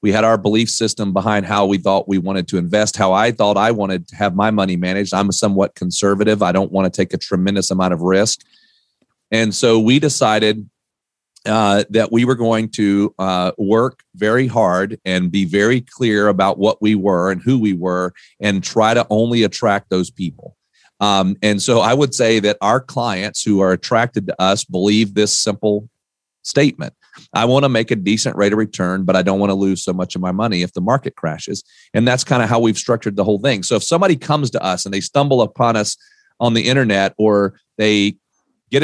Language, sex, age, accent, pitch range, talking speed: English, male, 40-59, American, 100-120 Hz, 210 wpm